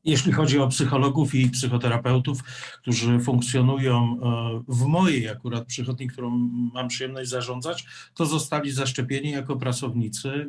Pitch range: 125-155 Hz